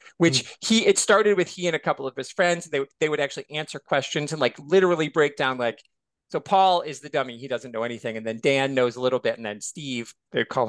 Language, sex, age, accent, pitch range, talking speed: English, male, 40-59, American, 135-175 Hz, 255 wpm